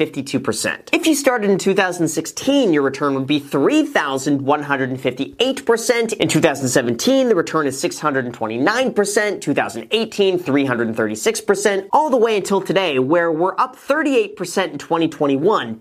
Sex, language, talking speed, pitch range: male, English, 105 wpm, 150-225 Hz